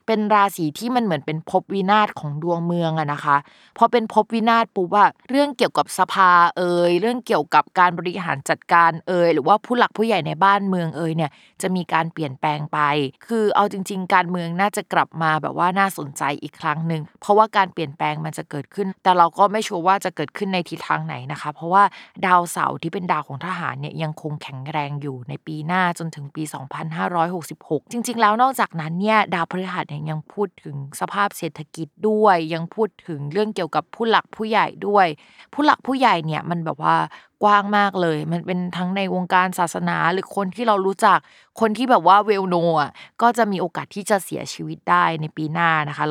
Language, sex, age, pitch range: Thai, female, 20-39, 155-200 Hz